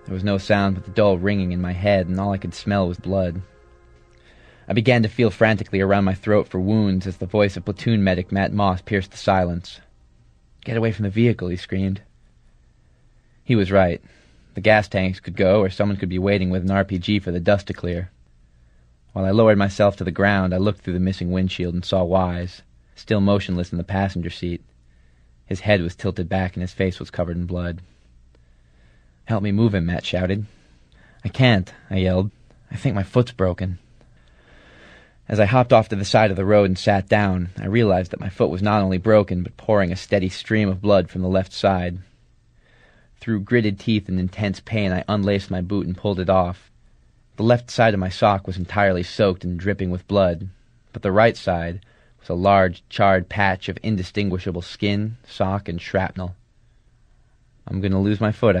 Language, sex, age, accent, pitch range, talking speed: English, male, 30-49, American, 90-105 Hz, 200 wpm